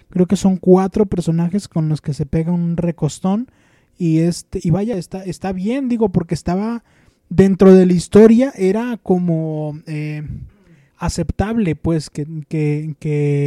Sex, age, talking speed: male, 20-39, 150 wpm